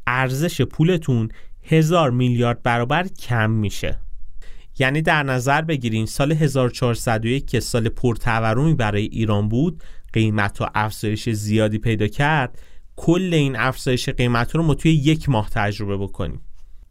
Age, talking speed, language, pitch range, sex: 30-49, 130 wpm, Persian, 105-140 Hz, male